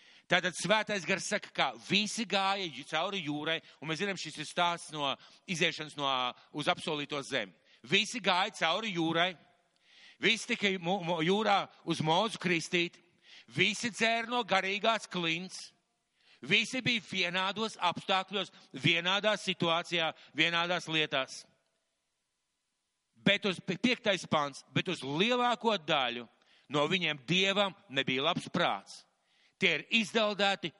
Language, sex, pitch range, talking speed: English, male, 165-205 Hz, 115 wpm